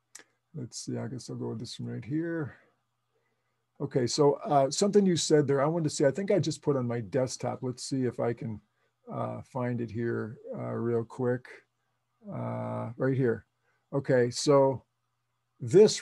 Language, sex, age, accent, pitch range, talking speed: English, male, 50-69, American, 130-160 Hz, 185 wpm